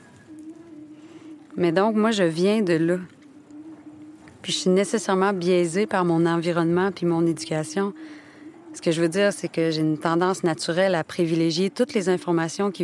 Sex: female